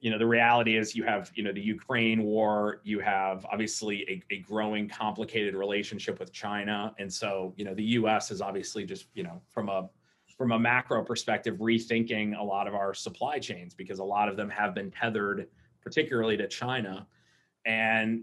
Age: 30-49